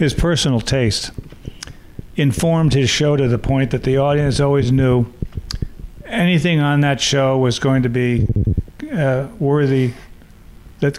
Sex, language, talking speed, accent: male, English, 135 wpm, American